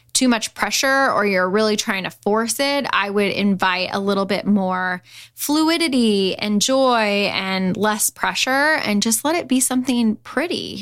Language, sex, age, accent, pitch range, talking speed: English, female, 10-29, American, 190-230 Hz, 165 wpm